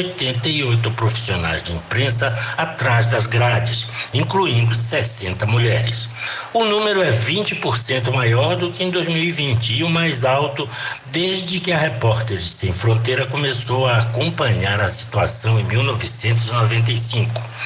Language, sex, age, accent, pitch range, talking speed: Portuguese, male, 60-79, Brazilian, 115-145 Hz, 125 wpm